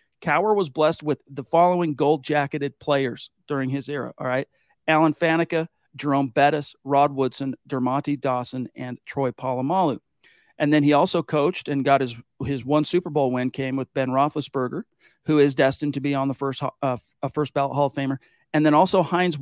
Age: 40-59